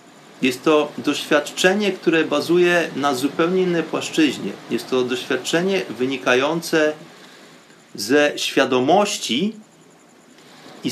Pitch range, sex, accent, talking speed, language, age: 135-175 Hz, male, native, 90 wpm, Polish, 30-49